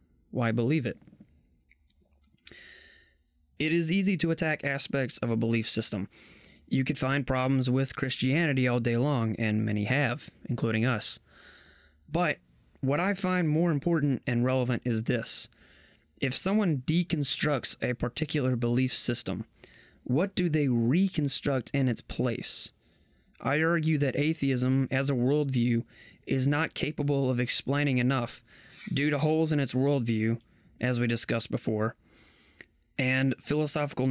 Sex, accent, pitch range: male, American, 115-145 Hz